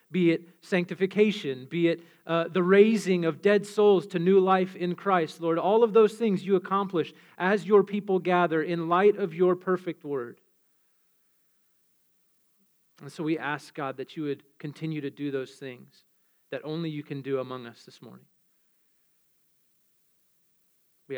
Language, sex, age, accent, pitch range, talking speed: English, male, 30-49, American, 165-215 Hz, 160 wpm